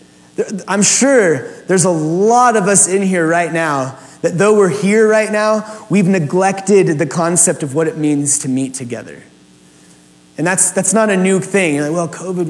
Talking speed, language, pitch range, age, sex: 180 wpm, English, 150-200 Hz, 20-39, male